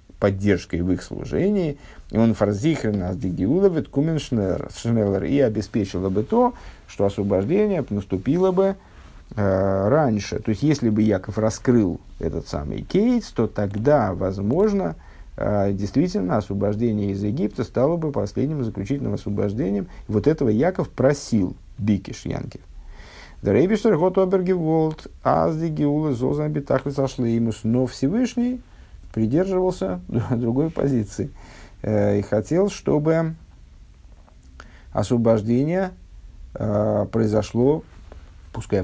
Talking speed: 90 wpm